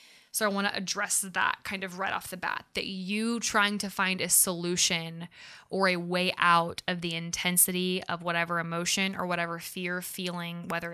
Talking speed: 185 wpm